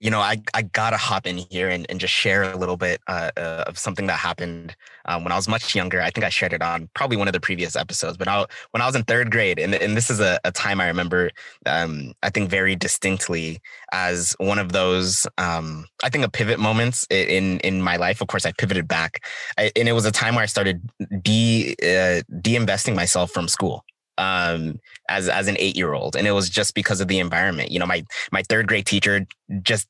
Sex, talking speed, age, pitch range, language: male, 235 wpm, 20-39, 90-110 Hz, English